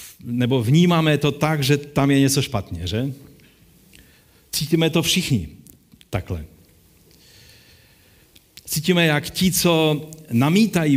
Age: 50-69